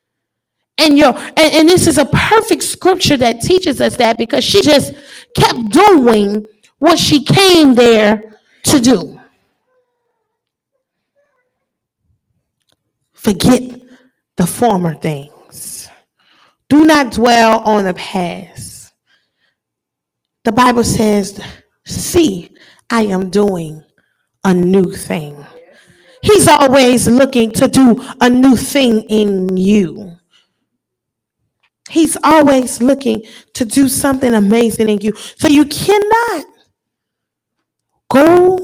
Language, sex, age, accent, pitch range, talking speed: English, female, 30-49, American, 210-300 Hz, 105 wpm